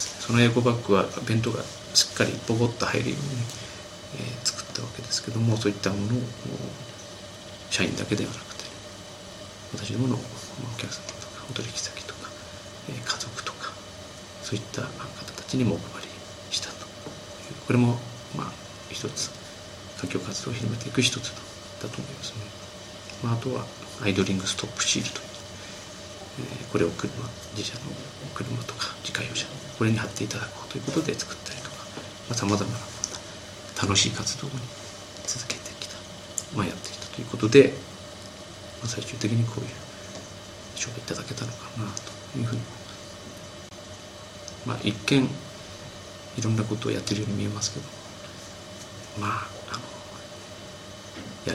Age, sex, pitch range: 40-59, male, 100-120 Hz